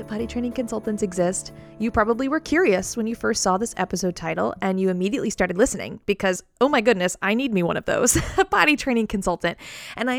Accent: American